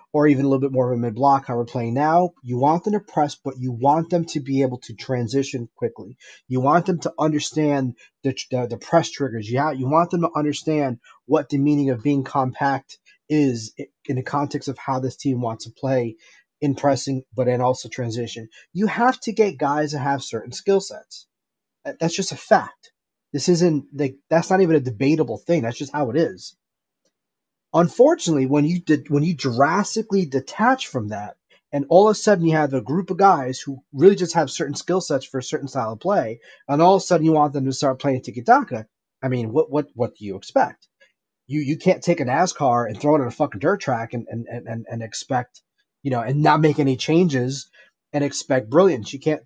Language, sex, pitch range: English, male, 130-160 Hz